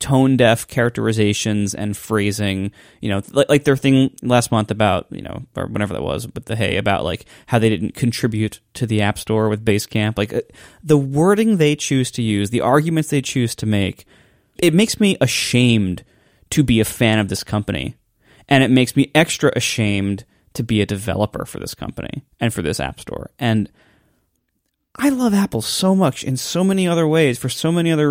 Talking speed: 195 wpm